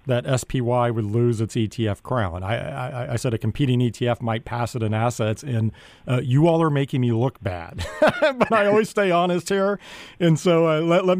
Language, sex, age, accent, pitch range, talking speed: English, male, 40-59, American, 115-145 Hz, 210 wpm